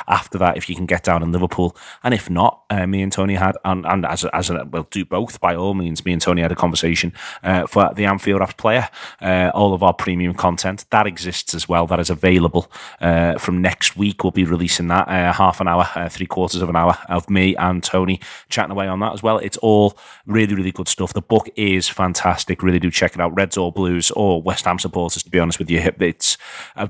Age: 30-49